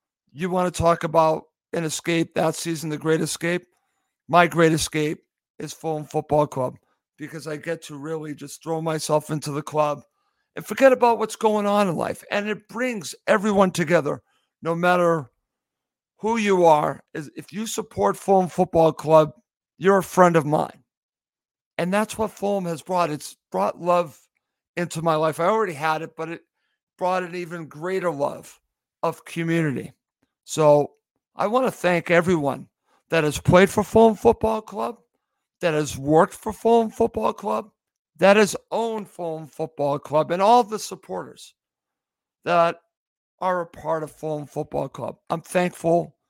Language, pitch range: English, 155-190 Hz